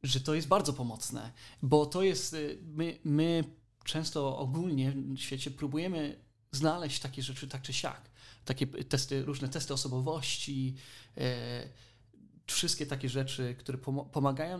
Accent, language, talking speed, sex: native, Polish, 125 wpm, male